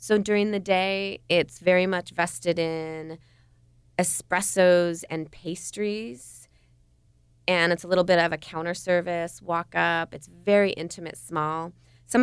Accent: American